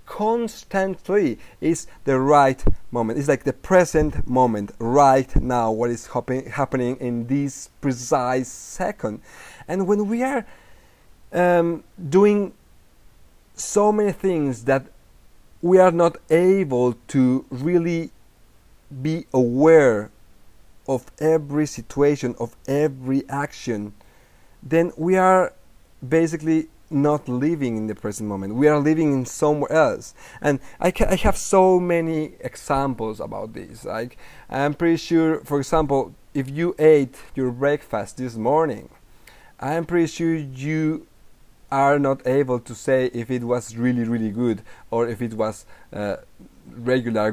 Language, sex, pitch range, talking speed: English, male, 120-165 Hz, 130 wpm